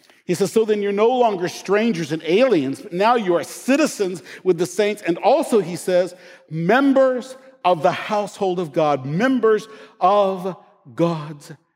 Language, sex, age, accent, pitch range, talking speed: English, male, 50-69, American, 165-260 Hz, 160 wpm